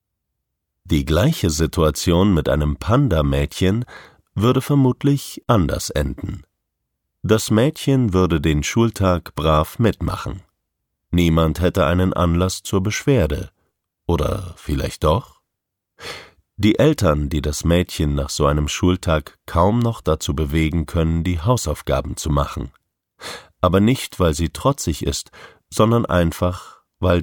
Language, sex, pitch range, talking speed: German, male, 80-105 Hz, 115 wpm